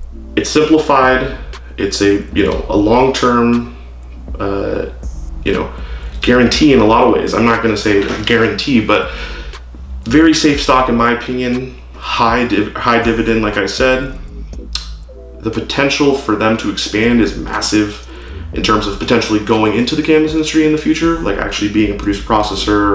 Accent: American